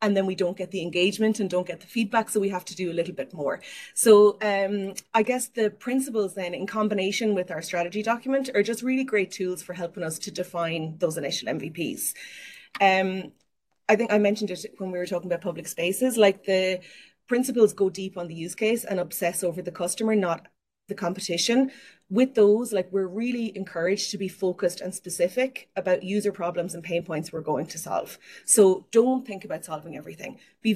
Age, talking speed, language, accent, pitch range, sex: 30-49, 205 wpm, English, Irish, 175-215 Hz, female